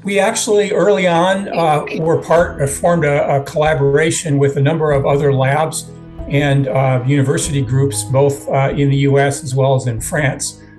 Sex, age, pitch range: male, 50-69, 135-150 Hz